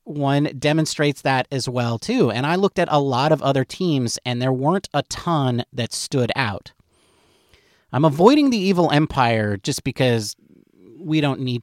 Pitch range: 120-180 Hz